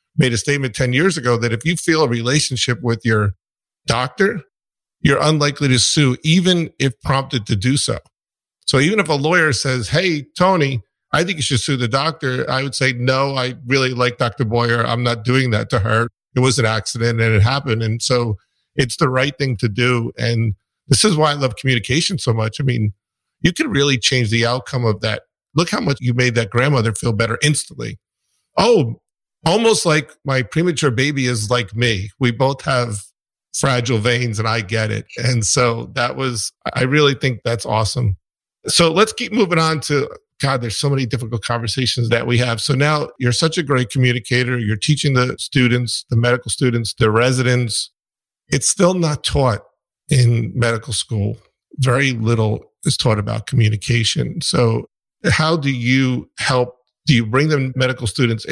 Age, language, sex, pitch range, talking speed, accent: 50-69, English, male, 115-140 Hz, 185 wpm, American